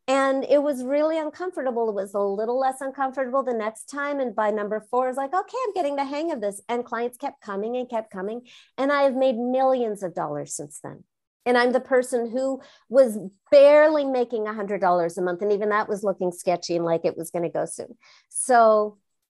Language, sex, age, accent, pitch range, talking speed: English, female, 50-69, American, 190-270 Hz, 220 wpm